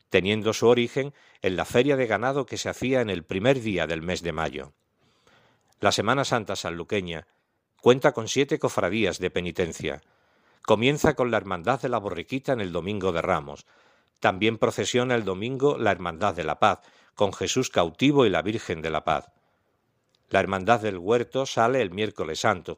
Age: 50-69